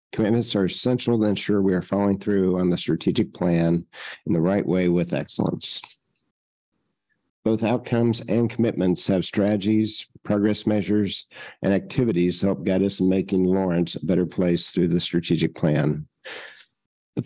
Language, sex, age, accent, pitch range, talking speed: English, male, 50-69, American, 95-110 Hz, 155 wpm